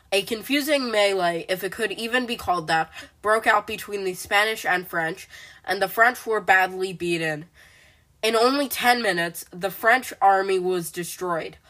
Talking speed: 165 wpm